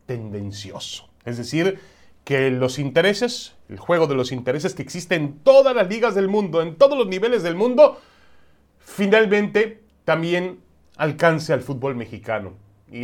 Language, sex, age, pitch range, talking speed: Spanish, male, 30-49, 110-165 Hz, 145 wpm